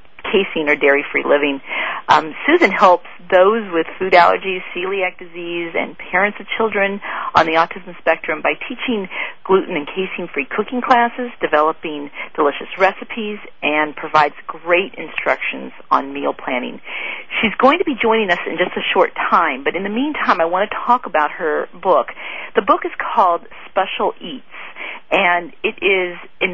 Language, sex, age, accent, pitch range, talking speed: English, female, 40-59, American, 170-225 Hz, 160 wpm